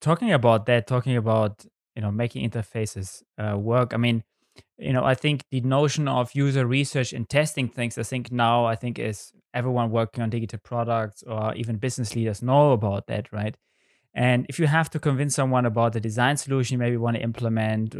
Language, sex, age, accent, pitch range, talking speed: English, male, 20-39, German, 115-140 Hz, 200 wpm